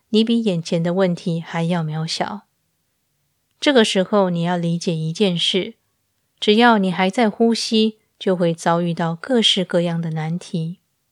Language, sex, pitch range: Chinese, female, 170-210 Hz